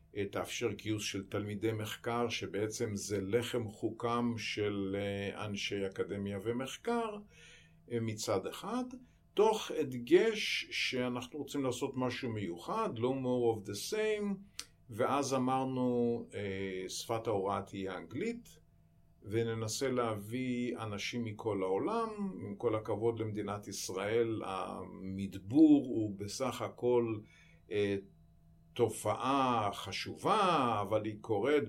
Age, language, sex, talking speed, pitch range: 50-69, Hebrew, male, 100 wpm, 100-125 Hz